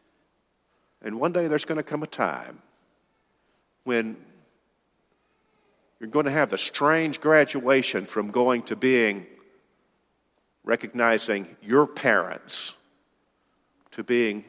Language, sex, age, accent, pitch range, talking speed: English, male, 50-69, American, 105-125 Hz, 110 wpm